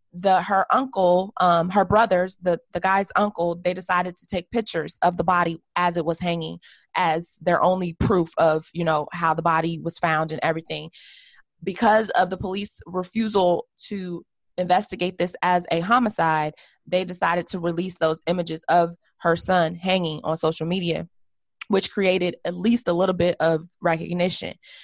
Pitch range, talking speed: 165-190 Hz, 165 wpm